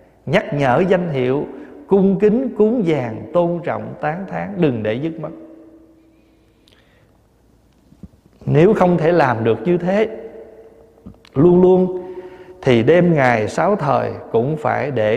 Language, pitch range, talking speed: Vietnamese, 115-155 Hz, 130 wpm